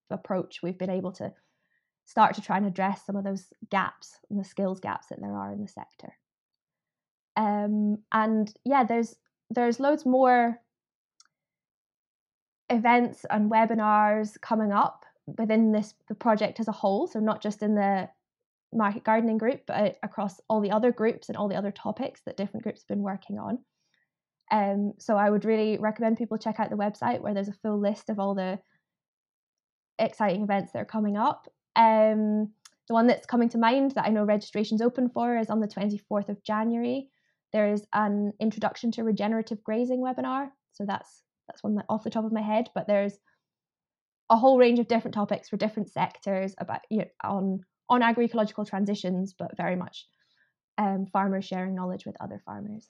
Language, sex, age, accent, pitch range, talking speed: English, female, 20-39, British, 200-225 Hz, 180 wpm